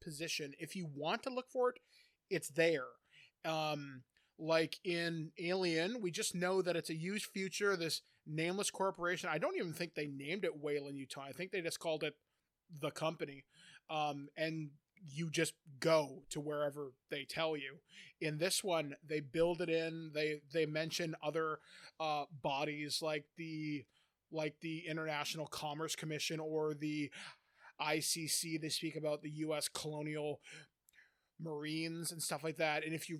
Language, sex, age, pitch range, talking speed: English, male, 20-39, 150-165 Hz, 160 wpm